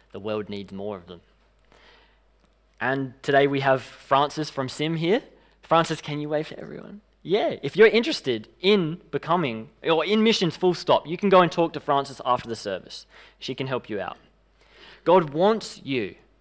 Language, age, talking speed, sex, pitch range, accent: English, 20-39, 180 wpm, male, 120-175 Hz, Australian